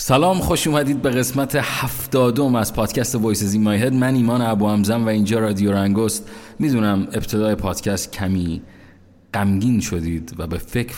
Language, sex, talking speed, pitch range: Persian, male, 150 wpm, 95-125 Hz